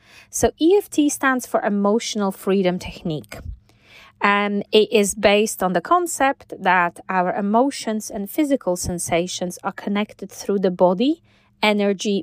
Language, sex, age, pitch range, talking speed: English, female, 20-39, 175-225 Hz, 130 wpm